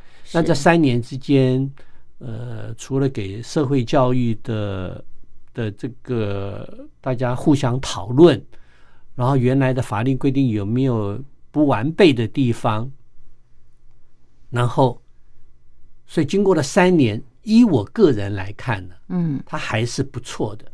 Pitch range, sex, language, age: 105-145 Hz, male, Chinese, 50-69